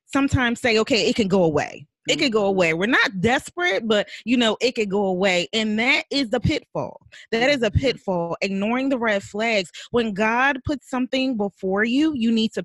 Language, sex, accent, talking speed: English, female, American, 205 wpm